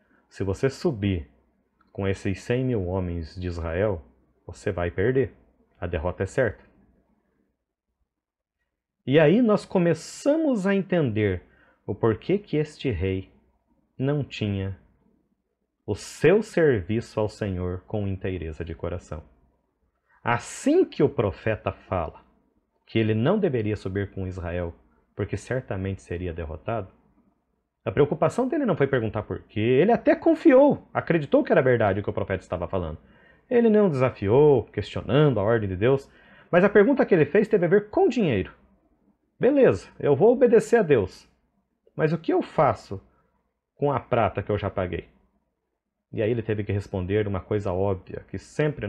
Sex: male